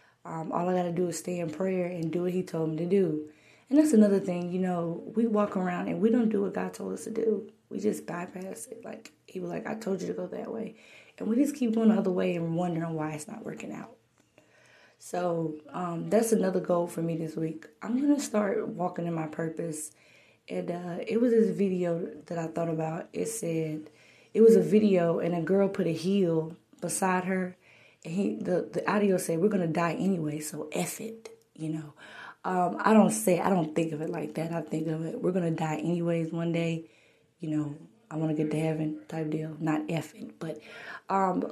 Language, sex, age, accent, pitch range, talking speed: English, female, 20-39, American, 160-210 Hz, 230 wpm